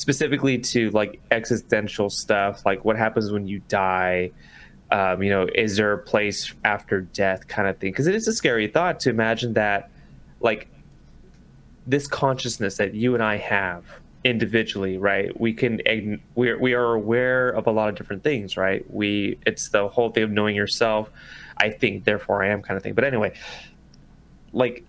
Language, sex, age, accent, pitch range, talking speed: English, male, 20-39, American, 100-125 Hz, 180 wpm